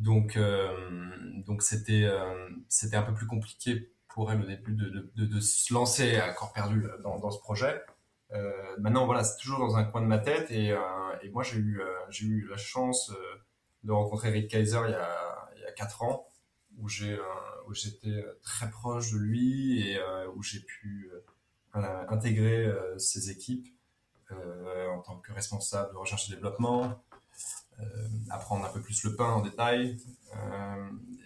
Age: 20-39